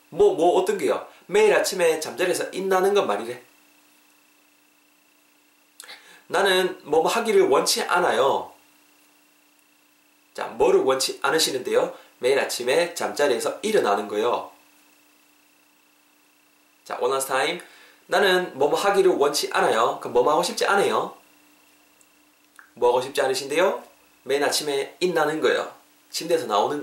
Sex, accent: male, native